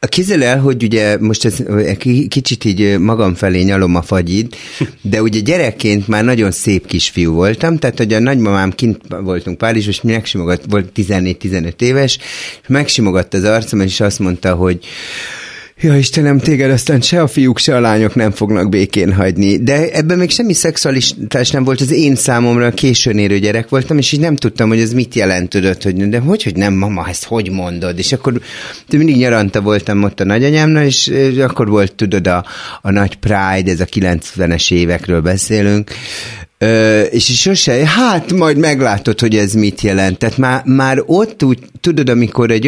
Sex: male